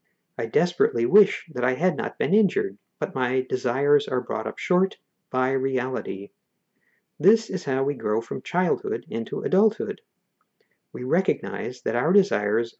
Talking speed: 150 wpm